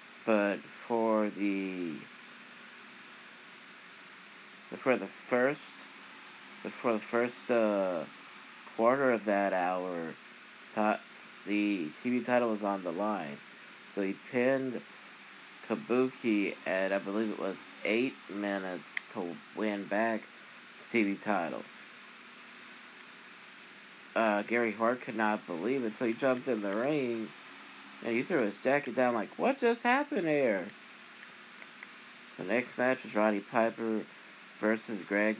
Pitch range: 100-120 Hz